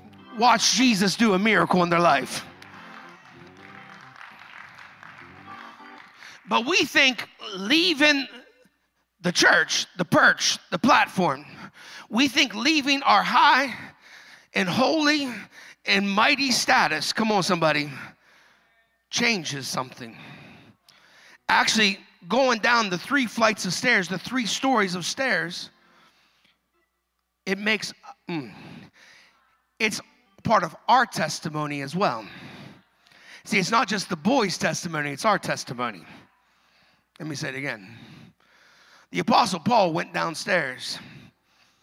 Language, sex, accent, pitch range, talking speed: English, male, American, 175-255 Hz, 110 wpm